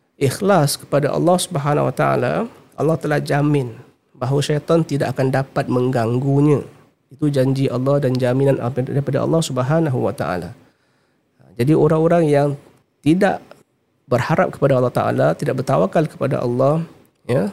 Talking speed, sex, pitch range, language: 130 wpm, male, 130-155 Hz, Malay